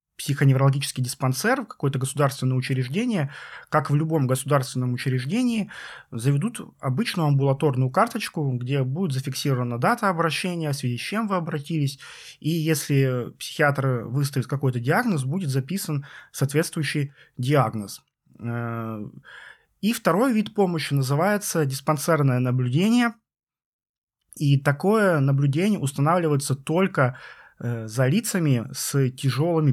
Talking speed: 105 wpm